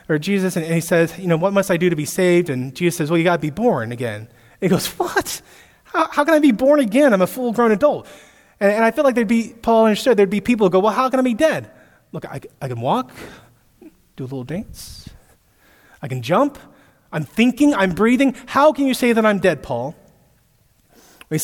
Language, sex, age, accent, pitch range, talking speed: English, male, 30-49, American, 145-200 Hz, 235 wpm